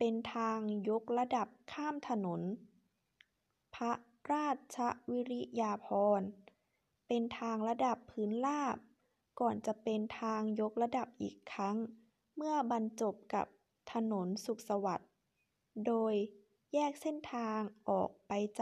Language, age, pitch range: Thai, 20-39, 210-245 Hz